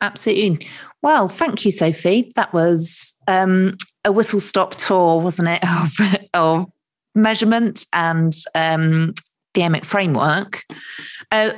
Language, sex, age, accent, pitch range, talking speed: English, female, 40-59, British, 165-195 Hz, 115 wpm